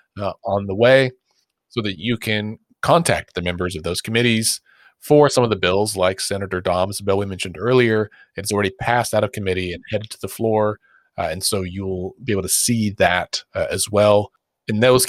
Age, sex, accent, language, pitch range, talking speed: 40-59, male, American, English, 95-125 Hz, 205 wpm